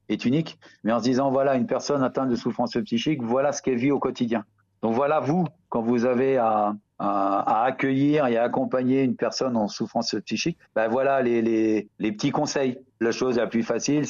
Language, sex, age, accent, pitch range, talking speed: French, male, 50-69, French, 110-130 Hz, 210 wpm